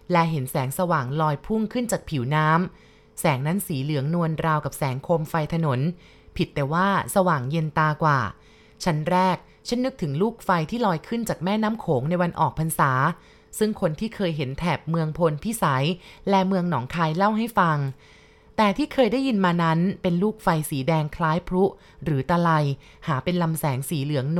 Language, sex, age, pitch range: Thai, female, 20-39, 155-195 Hz